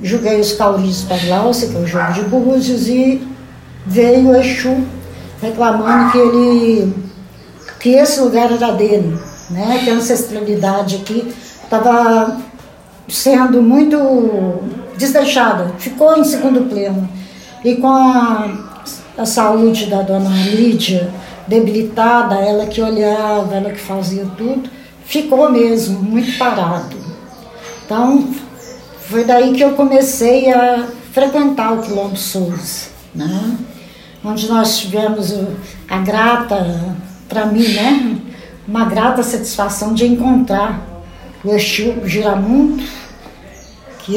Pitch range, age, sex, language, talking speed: 200-245 Hz, 60-79, female, Portuguese, 115 wpm